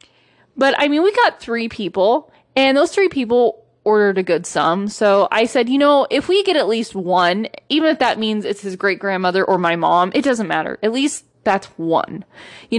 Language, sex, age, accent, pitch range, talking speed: English, female, 20-39, American, 195-275 Hz, 210 wpm